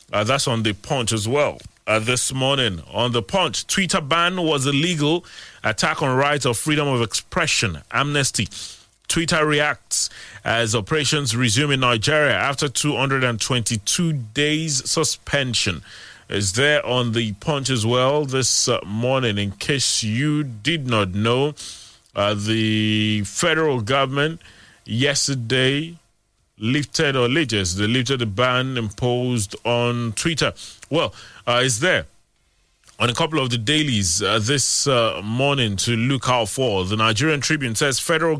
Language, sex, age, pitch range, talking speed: English, male, 30-49, 110-145 Hz, 140 wpm